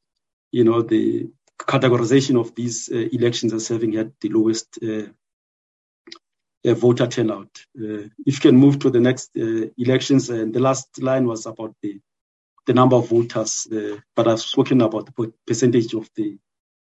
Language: English